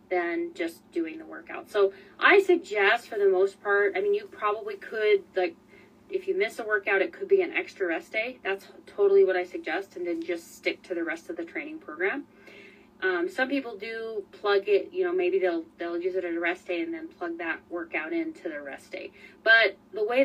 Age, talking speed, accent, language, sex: 20-39, 220 wpm, American, English, female